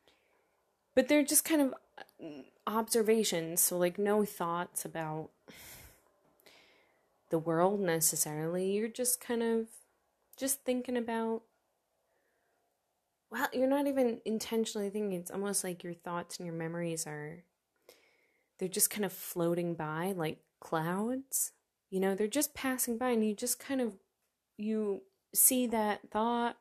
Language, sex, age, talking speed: English, female, 20-39, 135 wpm